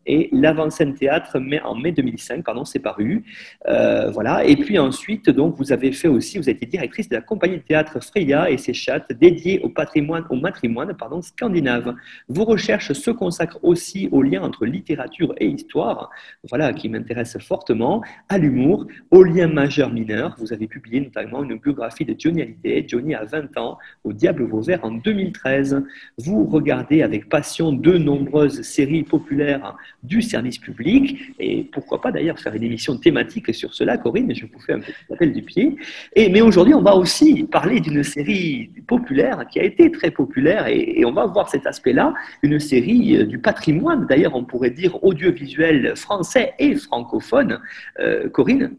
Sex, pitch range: male, 140-235 Hz